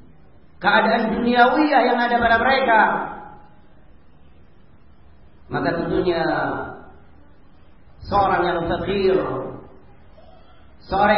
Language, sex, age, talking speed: Finnish, male, 40-59, 65 wpm